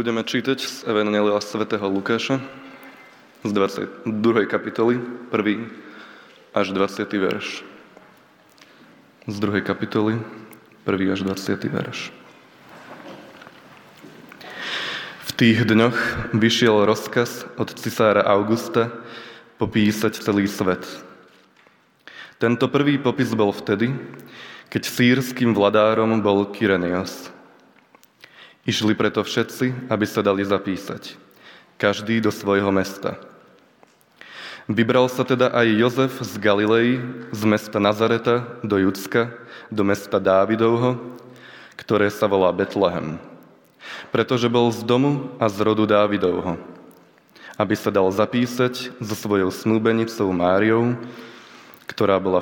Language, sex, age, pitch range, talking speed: Slovak, male, 20-39, 100-120 Hz, 105 wpm